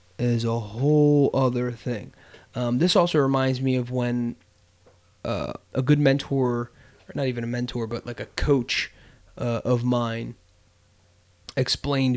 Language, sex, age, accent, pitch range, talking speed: English, male, 20-39, American, 115-140 Hz, 145 wpm